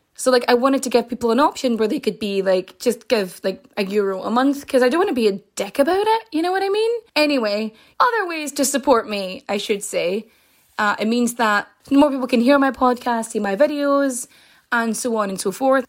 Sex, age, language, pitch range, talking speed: female, 20-39, English, 215-275 Hz, 240 wpm